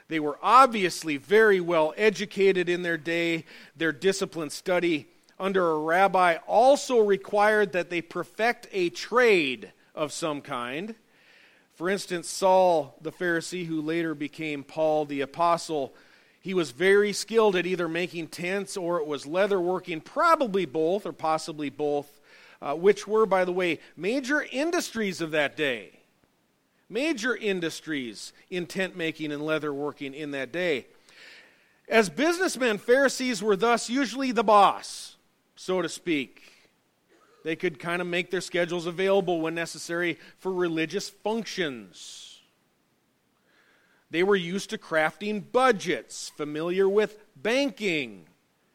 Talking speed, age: 135 wpm, 40-59